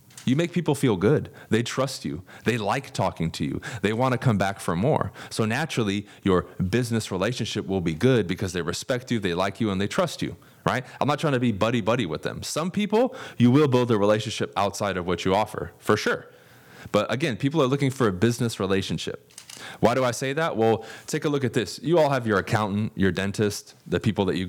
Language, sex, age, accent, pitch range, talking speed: English, male, 30-49, American, 100-130 Hz, 230 wpm